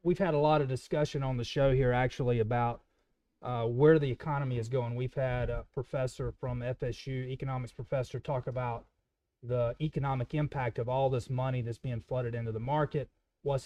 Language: English